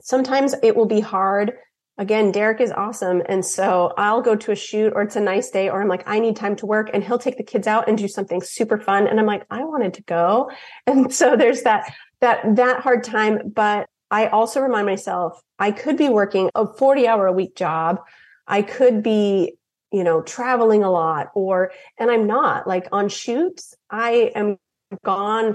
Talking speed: 205 wpm